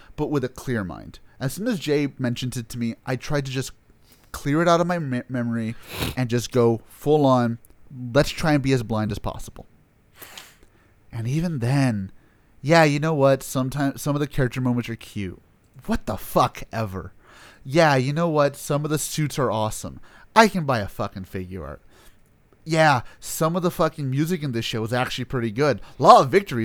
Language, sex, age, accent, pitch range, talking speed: English, male, 30-49, American, 115-160 Hz, 200 wpm